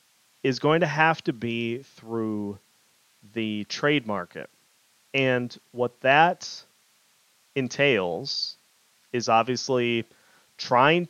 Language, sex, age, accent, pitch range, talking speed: English, male, 30-49, American, 115-140 Hz, 90 wpm